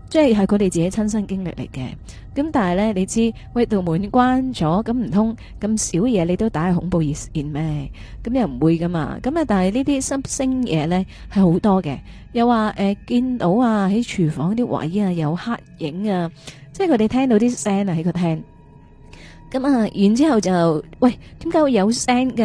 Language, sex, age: Chinese, female, 20-39